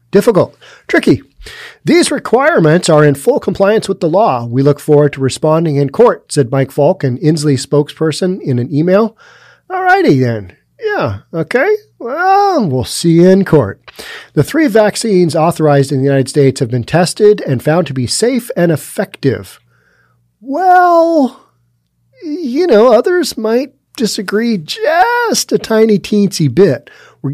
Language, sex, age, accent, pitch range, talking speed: English, male, 40-59, American, 130-195 Hz, 150 wpm